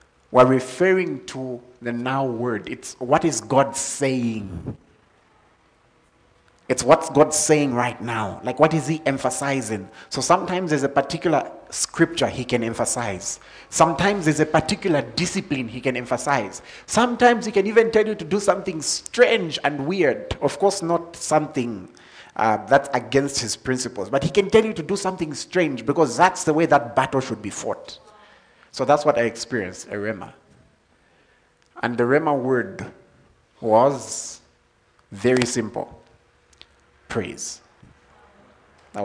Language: English